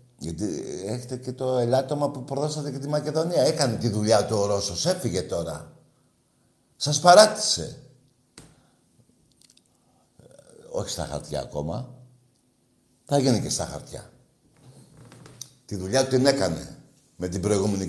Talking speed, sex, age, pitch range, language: 125 wpm, male, 60-79, 105-140 Hz, Greek